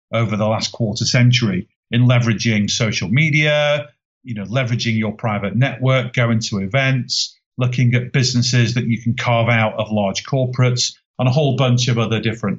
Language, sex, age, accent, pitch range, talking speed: English, male, 40-59, British, 115-140 Hz, 170 wpm